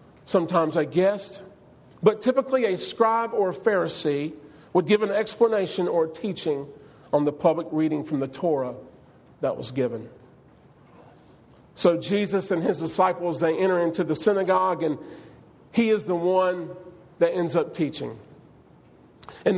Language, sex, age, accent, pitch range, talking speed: English, male, 40-59, American, 160-205 Hz, 140 wpm